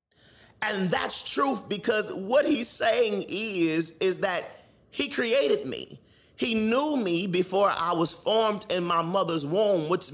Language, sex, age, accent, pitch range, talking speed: English, male, 30-49, American, 125-185 Hz, 150 wpm